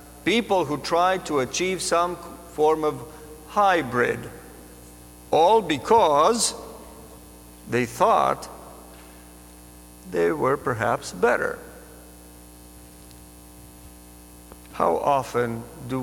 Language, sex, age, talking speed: English, male, 50-69, 75 wpm